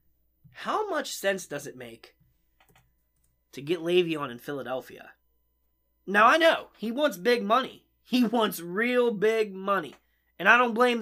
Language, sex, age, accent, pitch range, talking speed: English, male, 20-39, American, 135-225 Hz, 145 wpm